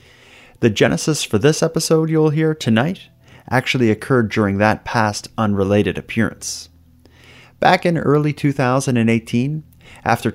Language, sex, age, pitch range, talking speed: English, male, 30-49, 110-135 Hz, 115 wpm